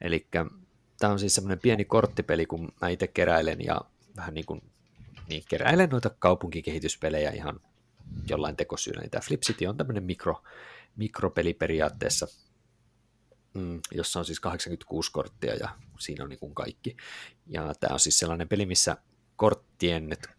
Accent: native